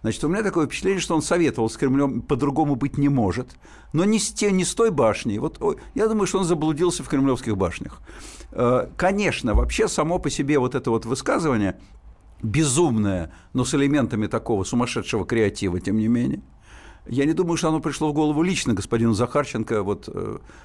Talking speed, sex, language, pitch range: 180 wpm, male, Russian, 115-155 Hz